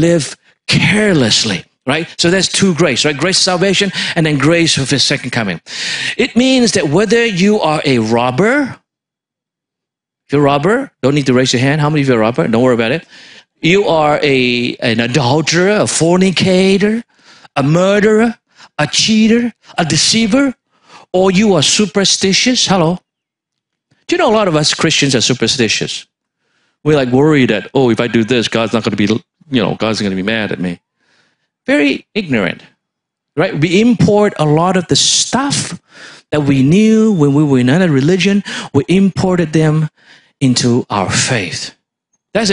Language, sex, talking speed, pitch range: English, male, 175 wpm, 135-200 Hz